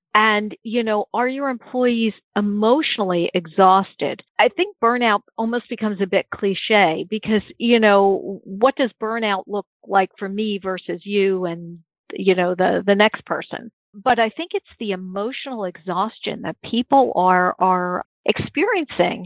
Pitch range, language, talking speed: 190-240 Hz, English, 145 wpm